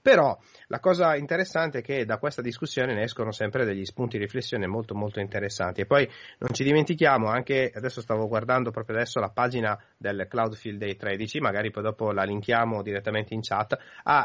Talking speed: 195 wpm